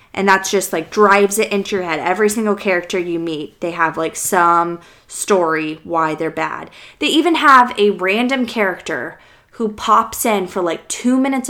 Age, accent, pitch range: 20-39, American, 165-215 Hz